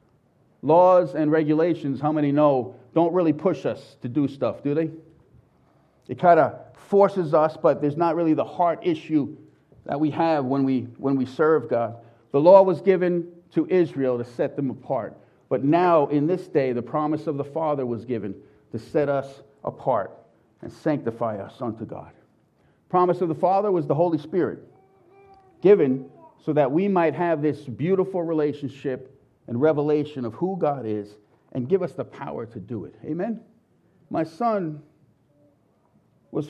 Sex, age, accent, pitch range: male, 40-59, American, 135-180 Hz